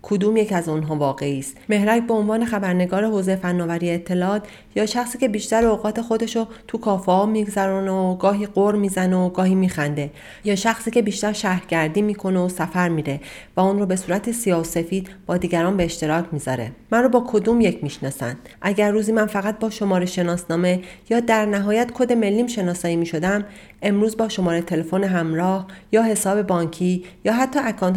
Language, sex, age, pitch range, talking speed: Persian, female, 30-49, 180-220 Hz, 175 wpm